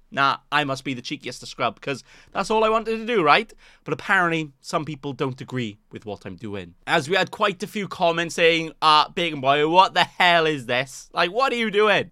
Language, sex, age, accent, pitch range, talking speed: English, male, 20-39, British, 155-215 Hz, 235 wpm